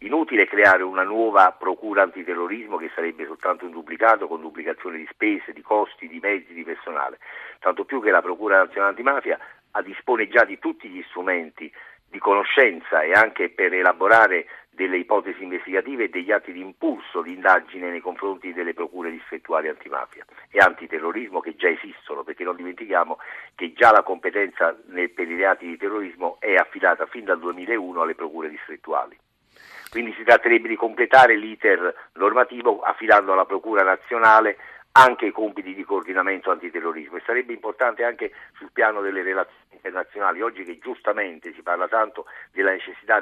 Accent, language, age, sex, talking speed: native, Italian, 50-69, male, 160 wpm